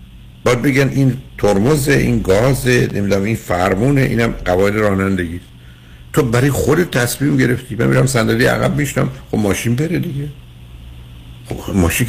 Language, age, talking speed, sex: Persian, 60-79, 140 wpm, male